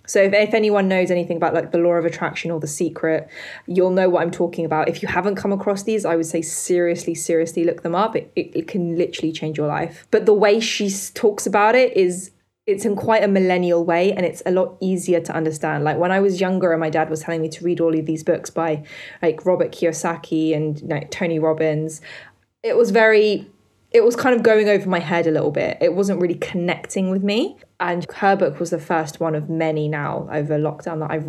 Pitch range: 160-190 Hz